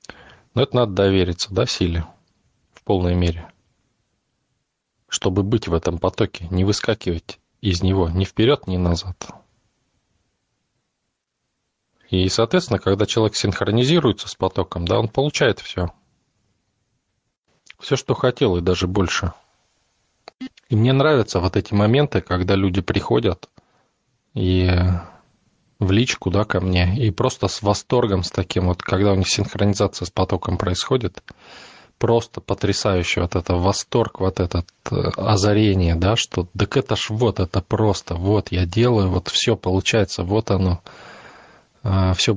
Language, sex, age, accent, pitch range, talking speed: Russian, male, 20-39, native, 90-110 Hz, 135 wpm